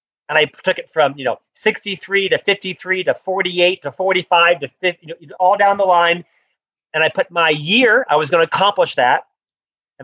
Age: 40-59